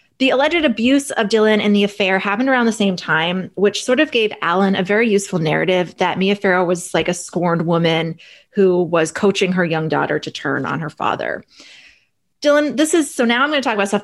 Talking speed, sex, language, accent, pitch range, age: 220 wpm, female, English, American, 175-230 Hz, 20-39